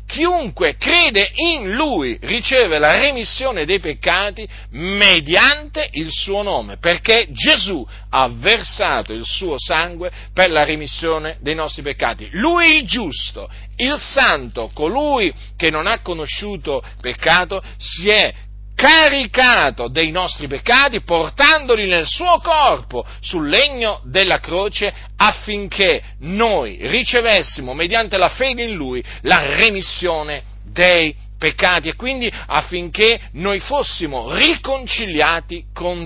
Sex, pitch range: male, 155-245 Hz